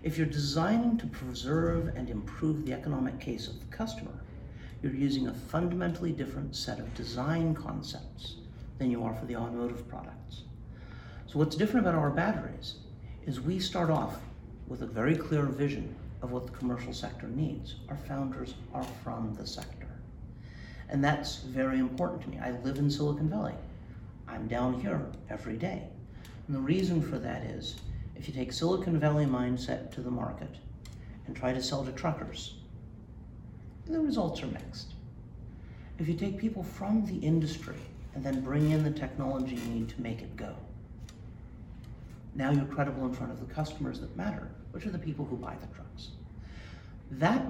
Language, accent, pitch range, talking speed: English, American, 115-150 Hz, 170 wpm